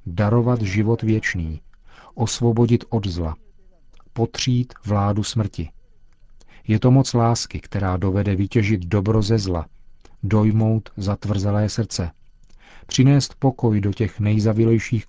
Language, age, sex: Czech, 40-59, male